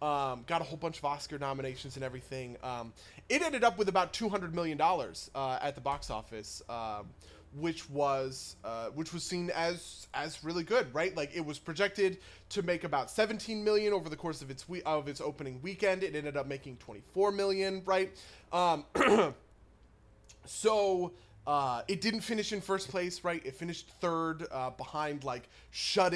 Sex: male